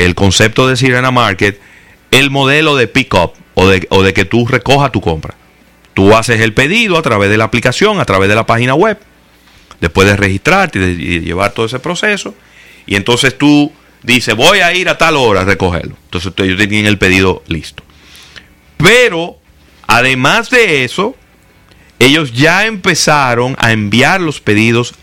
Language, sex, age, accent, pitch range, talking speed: Spanish, male, 30-49, Venezuelan, 90-130 Hz, 175 wpm